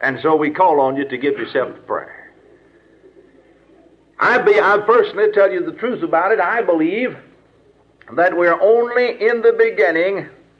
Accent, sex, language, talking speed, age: American, male, English, 165 wpm, 60-79